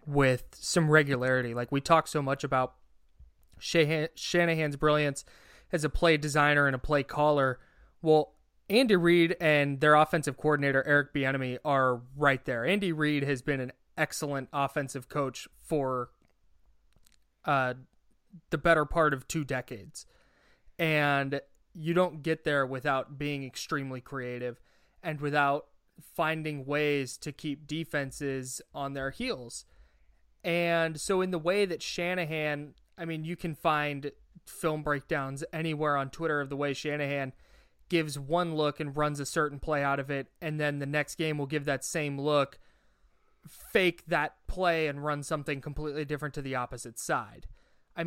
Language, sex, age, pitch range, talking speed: English, male, 20-39, 135-155 Hz, 150 wpm